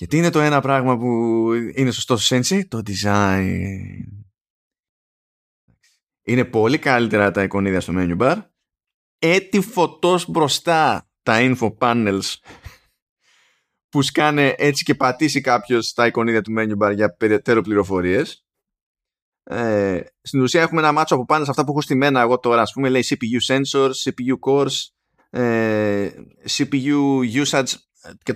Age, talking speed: 20-39, 135 wpm